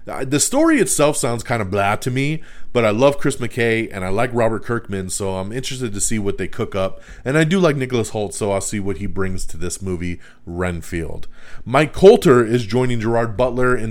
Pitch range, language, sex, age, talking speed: 105-145 Hz, English, male, 30-49, 220 wpm